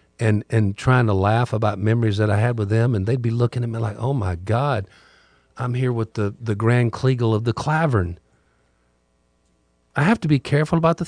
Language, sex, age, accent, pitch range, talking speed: English, male, 50-69, American, 95-160 Hz, 210 wpm